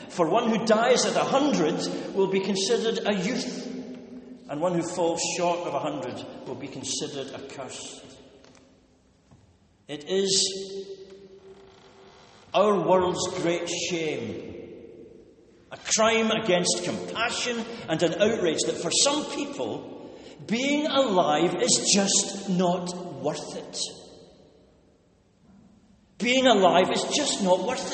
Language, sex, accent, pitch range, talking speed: English, male, British, 175-215 Hz, 120 wpm